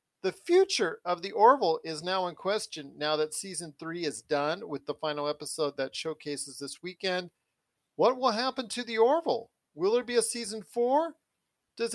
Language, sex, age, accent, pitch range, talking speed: English, male, 40-59, American, 155-220 Hz, 180 wpm